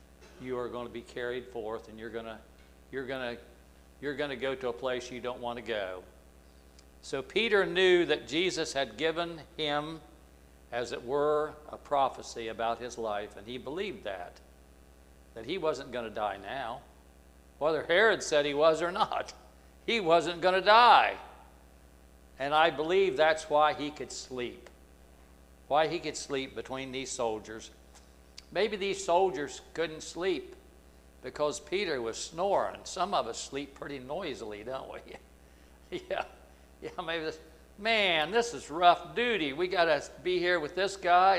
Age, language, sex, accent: 60-79, English, male, American